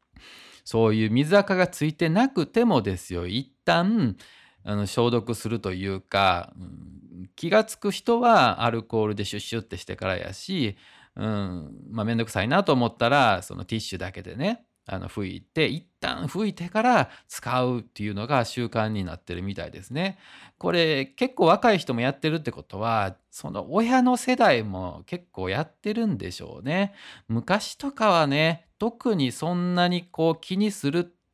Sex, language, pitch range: male, Japanese, 100-165 Hz